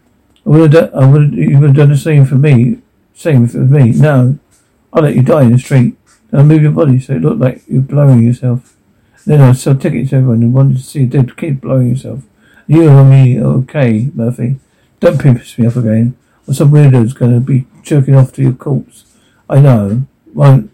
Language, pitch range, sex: English, 120-140 Hz, male